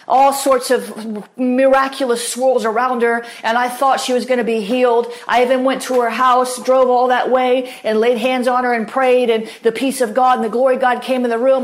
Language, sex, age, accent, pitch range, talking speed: English, female, 40-59, American, 240-290 Hz, 240 wpm